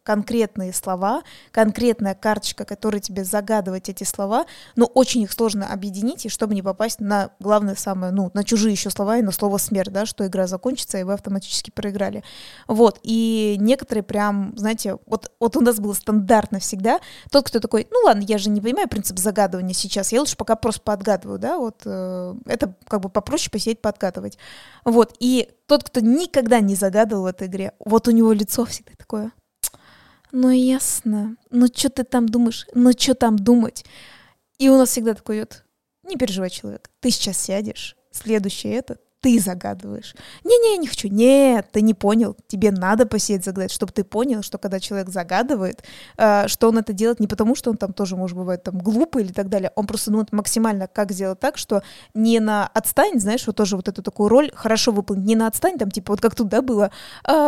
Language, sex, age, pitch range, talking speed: Russian, female, 20-39, 200-240 Hz, 195 wpm